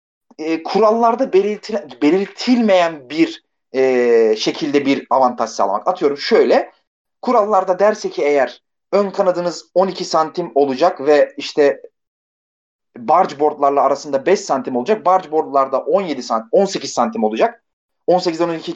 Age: 30-49